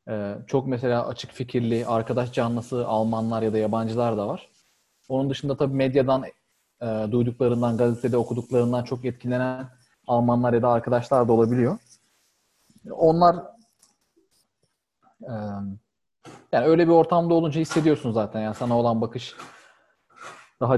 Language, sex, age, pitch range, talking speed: Turkish, male, 30-49, 110-130 Hz, 125 wpm